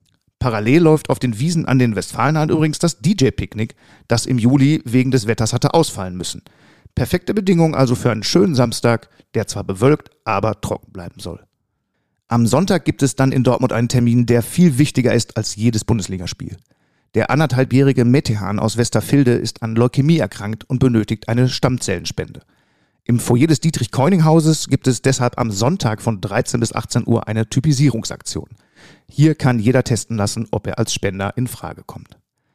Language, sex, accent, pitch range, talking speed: German, male, German, 110-140 Hz, 170 wpm